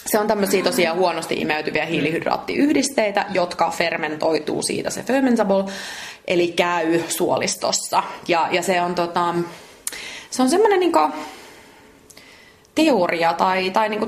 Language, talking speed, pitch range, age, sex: Finnish, 120 wpm, 165-220 Hz, 30-49, female